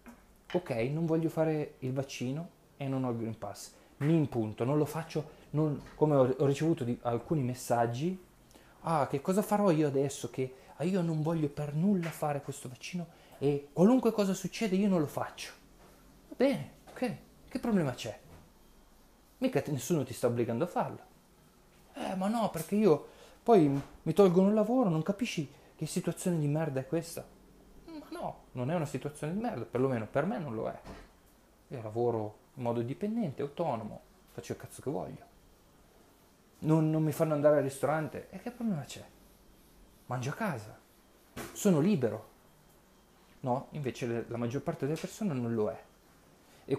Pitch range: 130-180 Hz